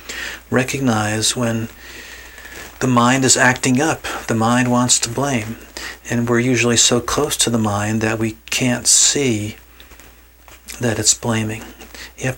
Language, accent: English, American